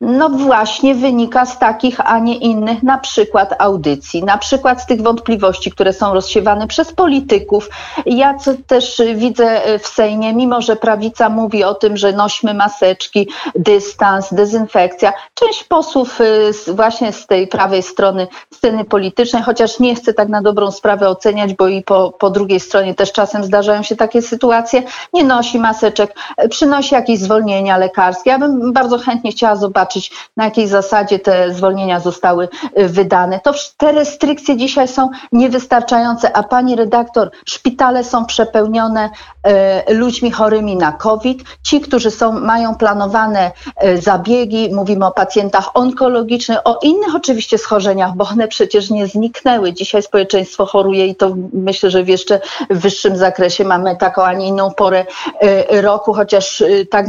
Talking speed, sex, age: 150 wpm, female, 40-59